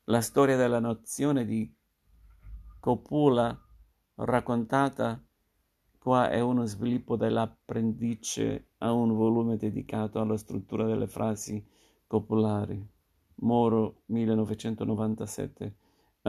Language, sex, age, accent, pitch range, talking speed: Italian, male, 50-69, native, 105-115 Hz, 85 wpm